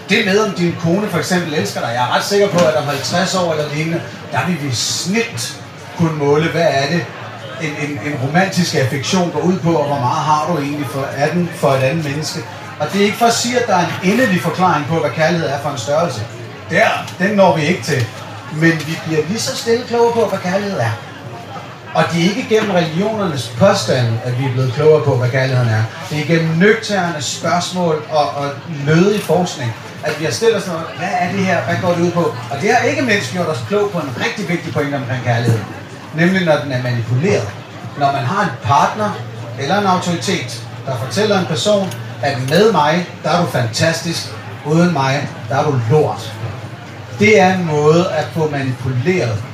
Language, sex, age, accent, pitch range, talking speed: Danish, male, 30-49, native, 130-175 Hz, 215 wpm